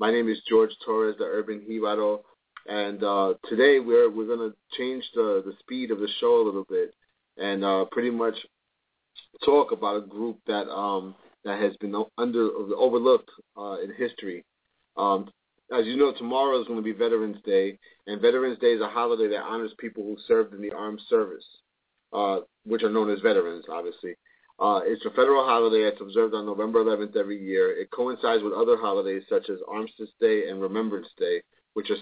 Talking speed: 190 wpm